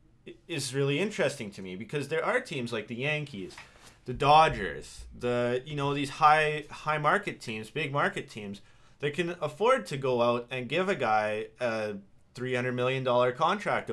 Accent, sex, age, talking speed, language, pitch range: American, male, 30-49, 175 wpm, English, 120-160 Hz